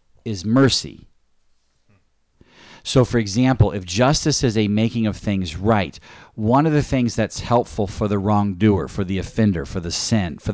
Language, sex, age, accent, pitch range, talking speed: English, male, 40-59, American, 95-130 Hz, 165 wpm